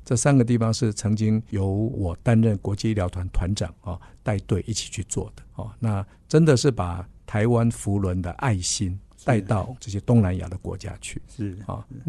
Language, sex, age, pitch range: Chinese, male, 60-79, 95-120 Hz